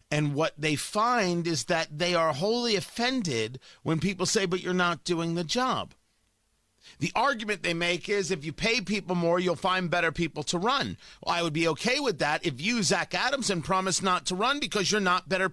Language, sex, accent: English, male, American